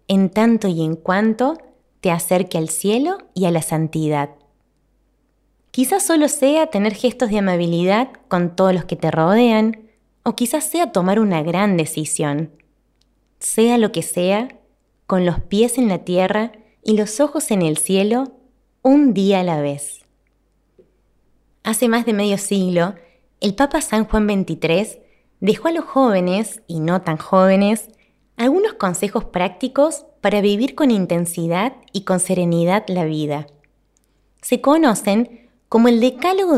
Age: 20-39